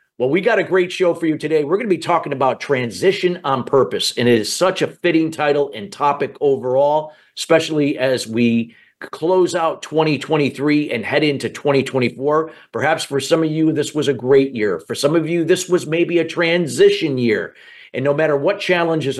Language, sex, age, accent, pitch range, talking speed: English, male, 50-69, American, 130-165 Hz, 195 wpm